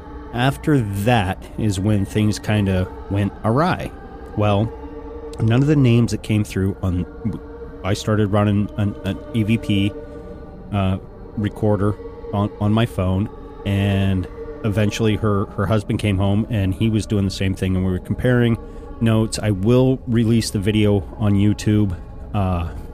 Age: 30-49